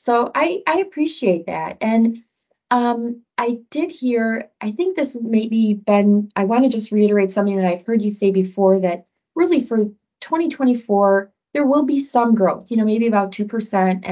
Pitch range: 195-240 Hz